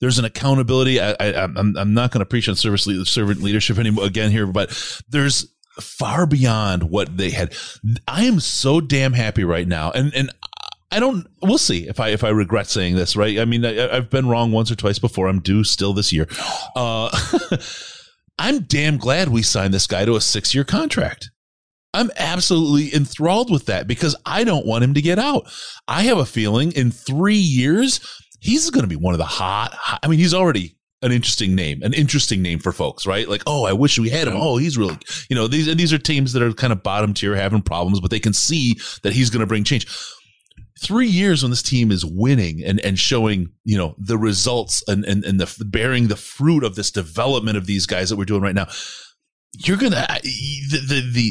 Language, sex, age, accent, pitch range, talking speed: English, male, 30-49, American, 100-140 Hz, 220 wpm